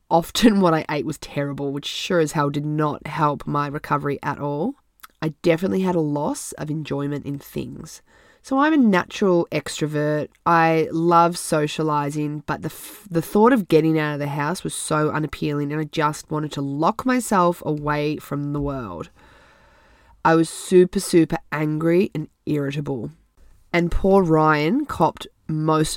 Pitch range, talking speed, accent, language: 145-175 Hz, 160 wpm, Australian, English